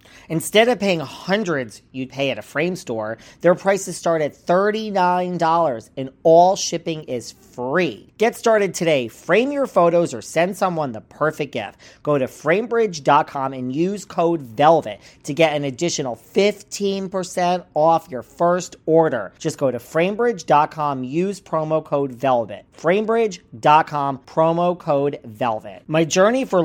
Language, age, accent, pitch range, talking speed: English, 40-59, American, 135-185 Hz, 140 wpm